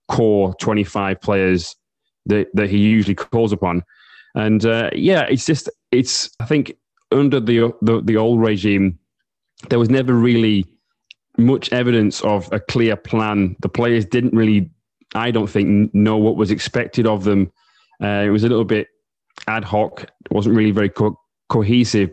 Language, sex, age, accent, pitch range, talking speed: English, male, 20-39, British, 105-120 Hz, 165 wpm